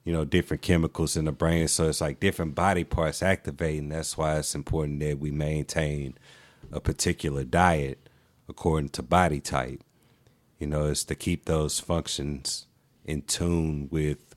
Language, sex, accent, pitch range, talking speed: English, male, American, 75-85 Hz, 160 wpm